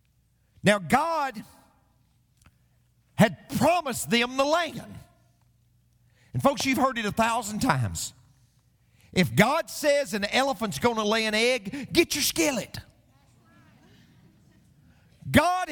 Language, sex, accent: English, male, American